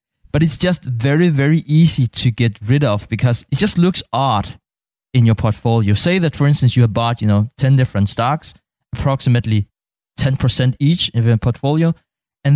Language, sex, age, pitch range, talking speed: English, male, 20-39, 110-140 Hz, 175 wpm